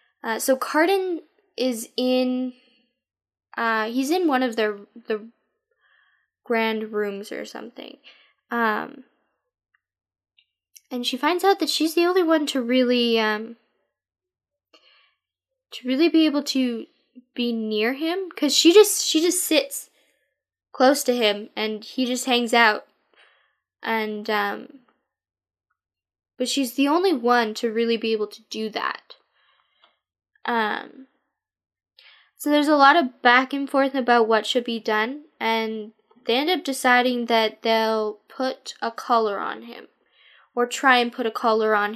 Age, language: 10-29, English